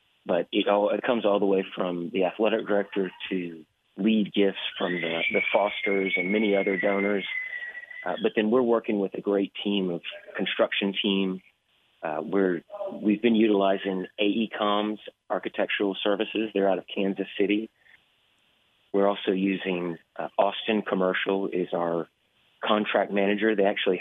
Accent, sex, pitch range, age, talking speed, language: American, male, 95-105 Hz, 30-49, 145 wpm, English